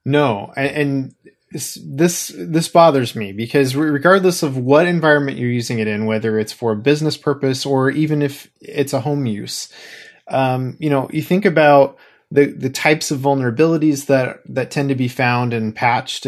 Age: 20-39